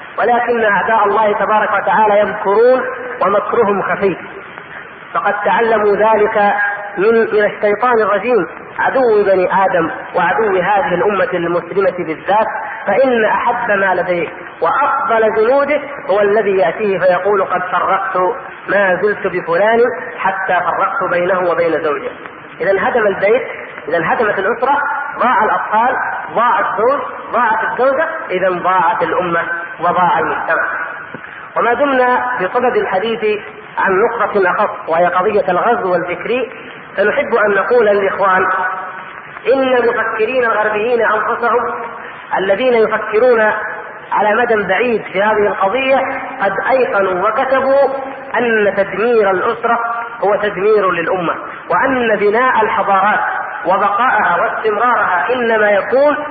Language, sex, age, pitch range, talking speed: Arabic, female, 40-59, 190-240 Hz, 110 wpm